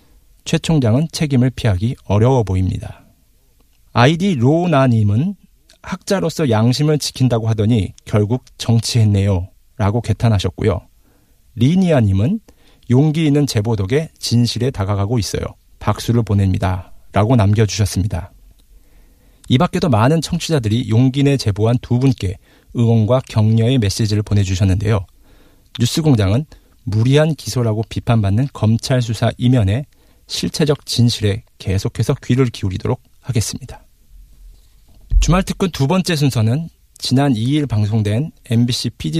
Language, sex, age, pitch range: Korean, male, 40-59, 105-140 Hz